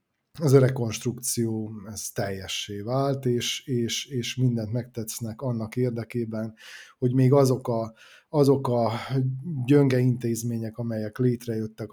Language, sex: Hungarian, male